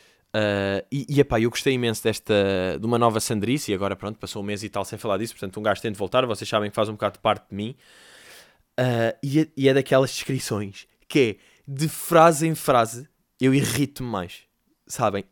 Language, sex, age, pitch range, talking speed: Portuguese, male, 20-39, 115-160 Hz, 215 wpm